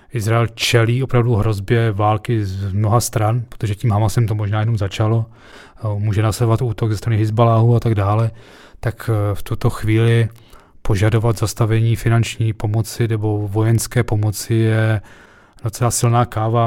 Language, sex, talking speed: Czech, male, 140 wpm